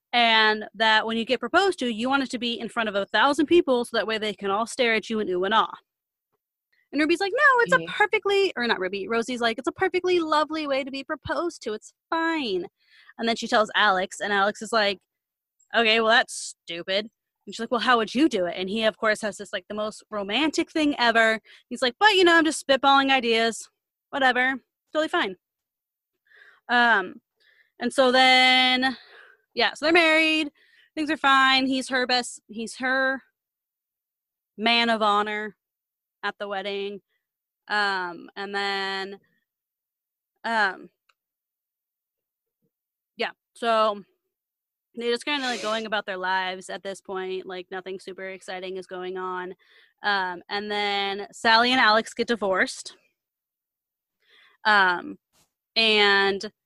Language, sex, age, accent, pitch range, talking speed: English, female, 20-39, American, 205-290 Hz, 165 wpm